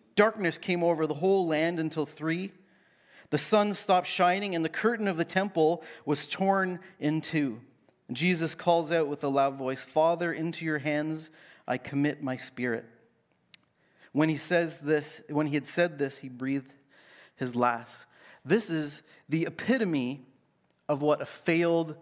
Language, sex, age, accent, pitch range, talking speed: English, male, 40-59, American, 135-170 Hz, 160 wpm